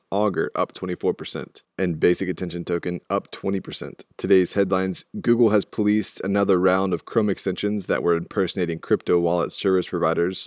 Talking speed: 150 wpm